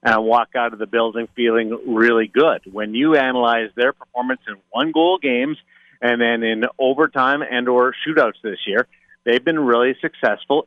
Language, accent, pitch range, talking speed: English, American, 120-140 Hz, 170 wpm